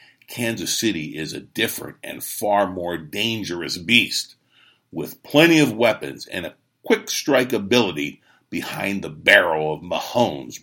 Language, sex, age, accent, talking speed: English, male, 50-69, American, 135 wpm